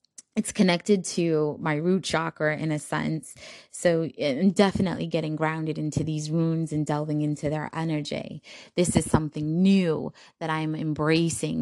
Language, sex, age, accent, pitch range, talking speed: English, female, 20-39, American, 150-175 Hz, 145 wpm